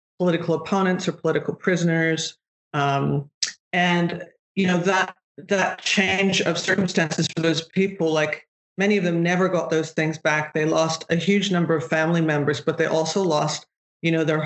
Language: English